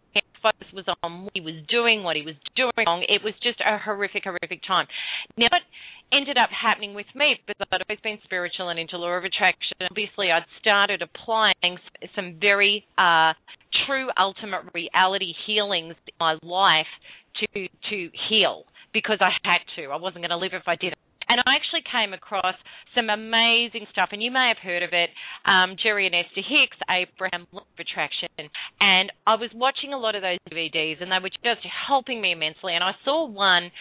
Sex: female